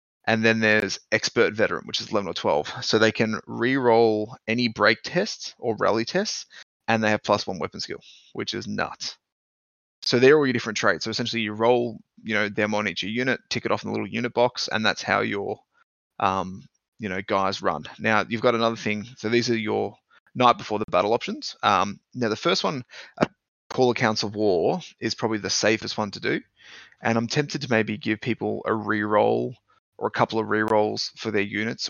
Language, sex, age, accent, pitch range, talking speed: English, male, 20-39, Australian, 105-115 Hz, 210 wpm